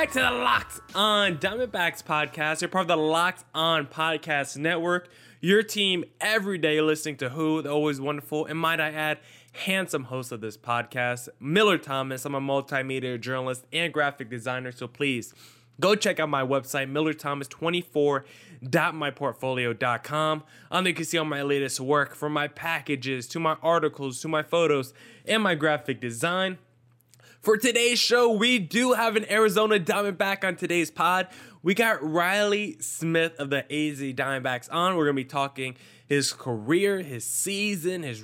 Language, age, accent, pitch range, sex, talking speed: English, 20-39, American, 135-180 Hz, male, 165 wpm